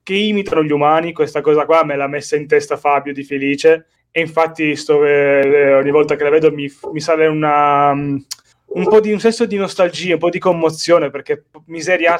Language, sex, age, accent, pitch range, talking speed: Italian, male, 20-39, native, 145-185 Hz, 195 wpm